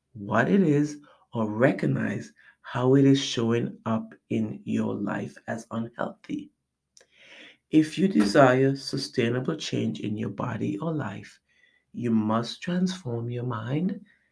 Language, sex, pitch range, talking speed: English, male, 115-160 Hz, 125 wpm